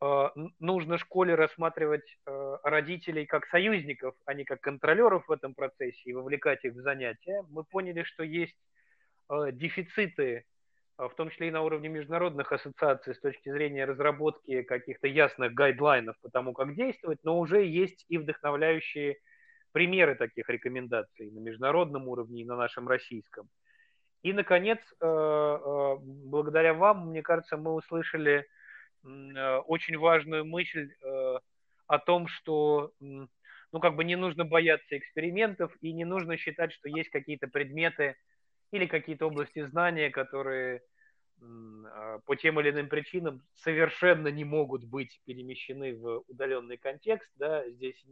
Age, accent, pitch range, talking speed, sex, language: 30-49, native, 135-170 Hz, 130 wpm, male, Russian